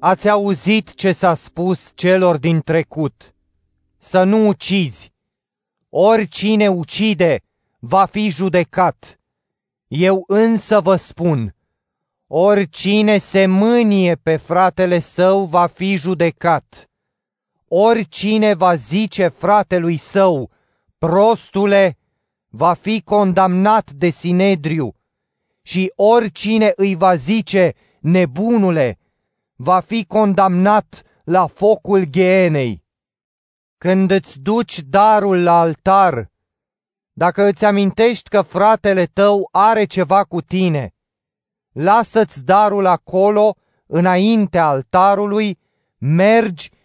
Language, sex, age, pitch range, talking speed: Romanian, male, 30-49, 170-205 Hz, 95 wpm